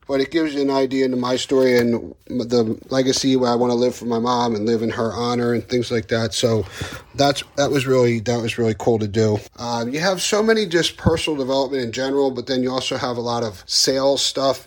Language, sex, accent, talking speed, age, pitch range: English, male, American, 245 wpm, 30-49, 115-135 Hz